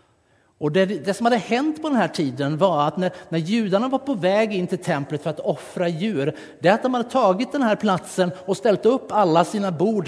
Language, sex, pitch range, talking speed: Swedish, male, 140-200 Hz, 240 wpm